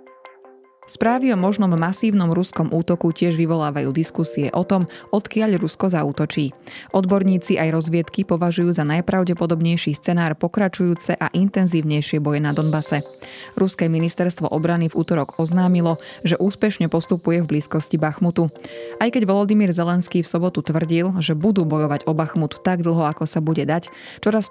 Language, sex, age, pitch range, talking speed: Slovak, female, 20-39, 155-185 Hz, 140 wpm